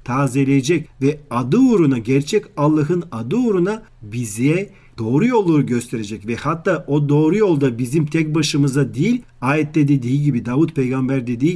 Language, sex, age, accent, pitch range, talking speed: Turkish, male, 40-59, native, 130-165 Hz, 140 wpm